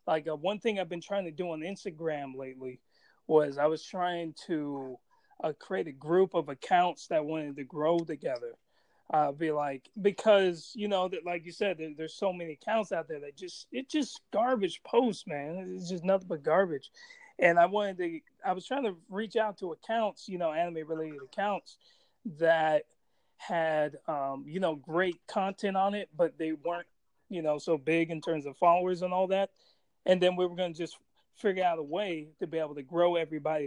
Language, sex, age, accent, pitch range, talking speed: English, male, 30-49, American, 160-195 Hz, 200 wpm